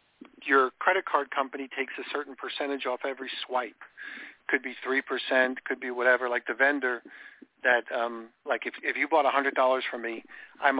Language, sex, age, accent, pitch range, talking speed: English, male, 50-69, American, 125-145 Hz, 185 wpm